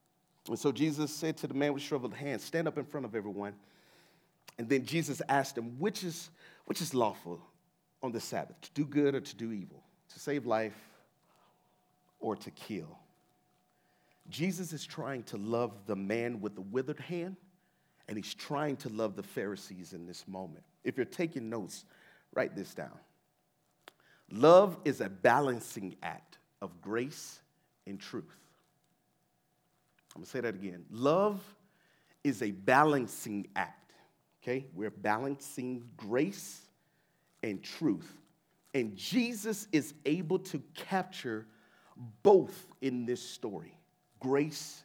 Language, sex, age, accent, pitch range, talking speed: English, male, 40-59, American, 120-175 Hz, 140 wpm